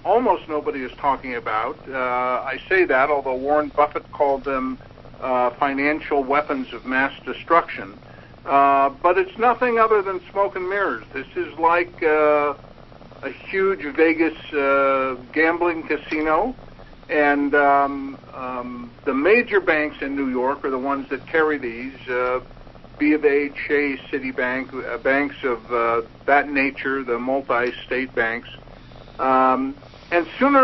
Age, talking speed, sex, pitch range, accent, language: 60-79, 145 wpm, male, 125-160 Hz, American, English